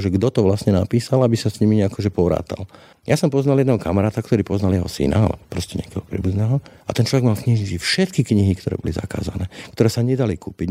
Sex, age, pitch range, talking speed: male, 50-69, 90-110 Hz, 220 wpm